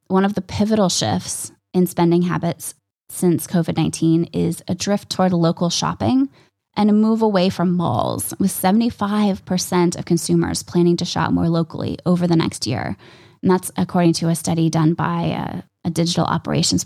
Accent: American